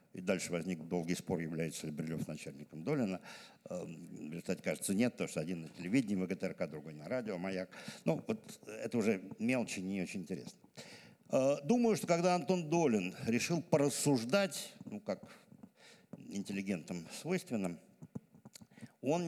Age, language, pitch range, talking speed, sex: 60-79, Russian, 95-155 Hz, 135 wpm, male